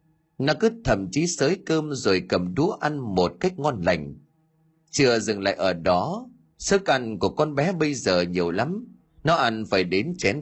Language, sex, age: Vietnamese, male, 30-49